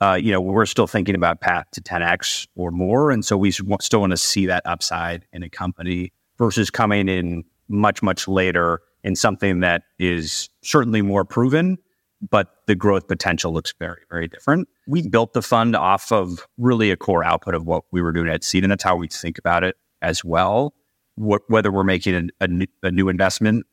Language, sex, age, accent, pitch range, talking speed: English, male, 30-49, American, 90-110 Hz, 200 wpm